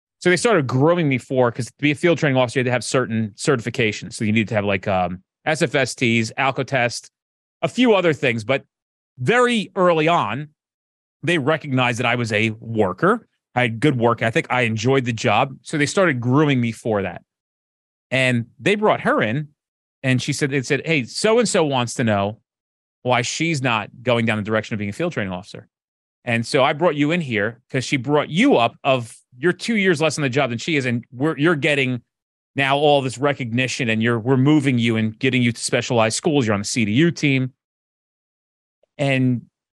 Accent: American